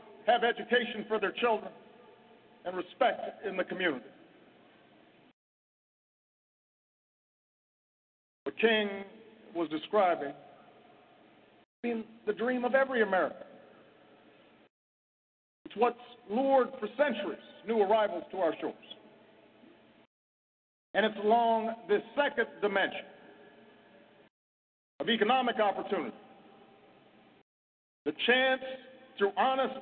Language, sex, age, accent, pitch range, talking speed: English, male, 50-69, American, 195-245 Hz, 85 wpm